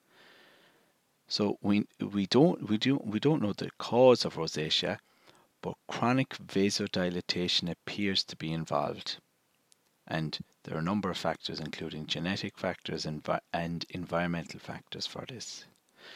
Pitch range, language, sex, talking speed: 80-100 Hz, English, male, 135 wpm